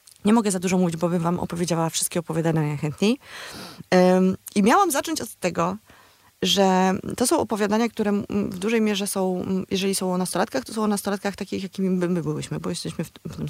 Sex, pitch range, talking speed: female, 160-200 Hz, 185 wpm